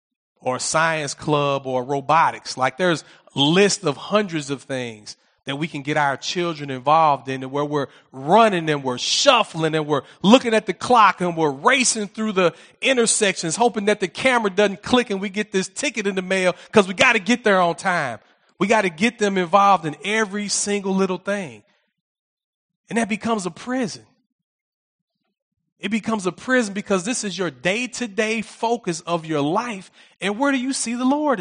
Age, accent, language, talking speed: 40-59, American, English, 185 wpm